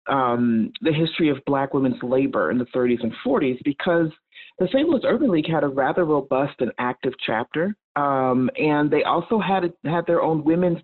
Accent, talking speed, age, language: American, 190 wpm, 40-59, English